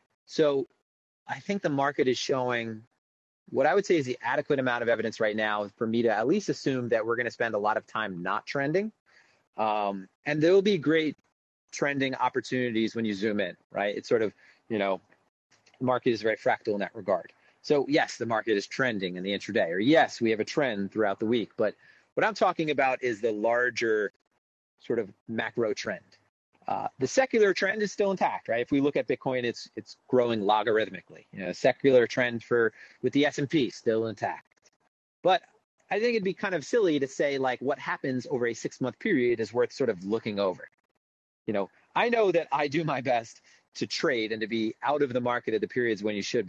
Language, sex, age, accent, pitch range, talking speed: English, male, 30-49, American, 110-150 Hz, 215 wpm